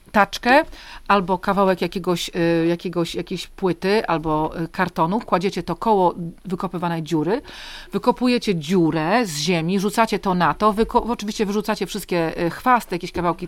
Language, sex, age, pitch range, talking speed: Polish, female, 40-59, 175-220 Hz, 115 wpm